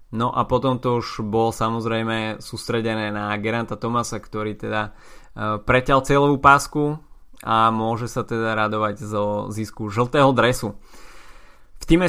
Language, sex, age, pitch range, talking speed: Slovak, male, 20-39, 110-130 Hz, 135 wpm